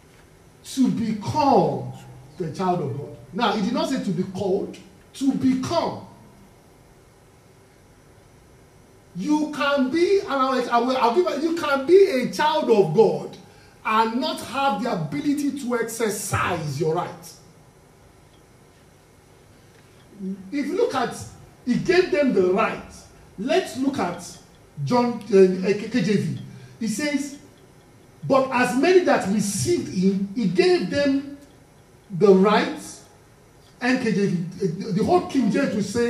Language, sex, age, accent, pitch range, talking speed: English, male, 50-69, Nigerian, 180-275 Hz, 125 wpm